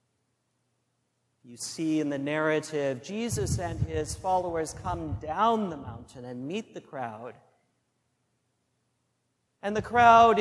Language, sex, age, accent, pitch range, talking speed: English, male, 50-69, American, 145-185 Hz, 115 wpm